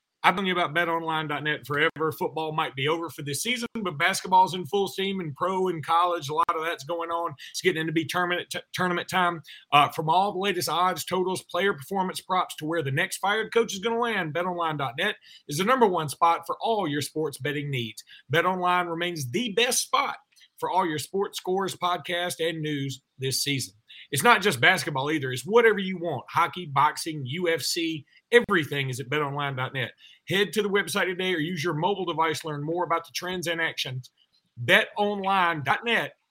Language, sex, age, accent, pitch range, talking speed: English, male, 40-59, American, 155-185 Hz, 190 wpm